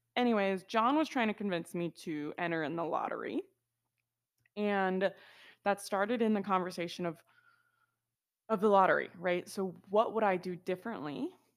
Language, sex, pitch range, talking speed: English, female, 175-220 Hz, 150 wpm